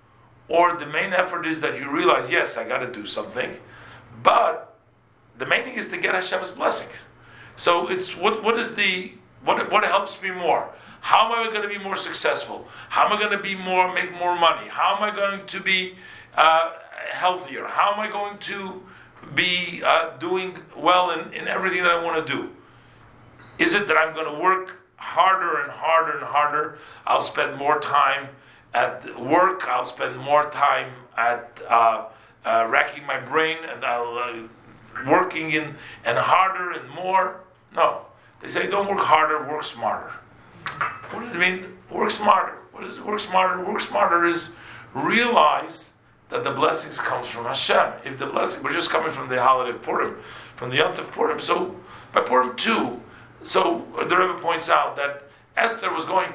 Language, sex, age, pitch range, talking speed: English, male, 50-69, 145-185 Hz, 180 wpm